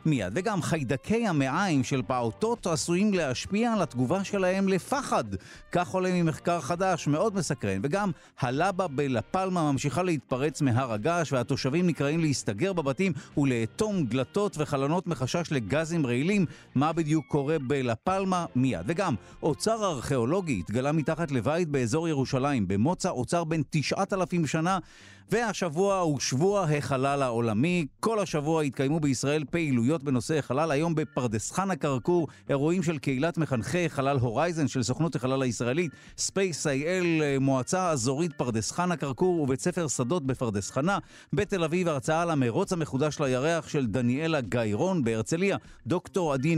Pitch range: 135-175 Hz